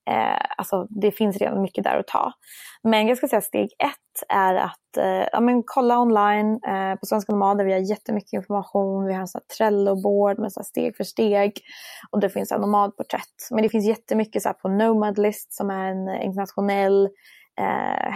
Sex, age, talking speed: female, 20-39, 185 wpm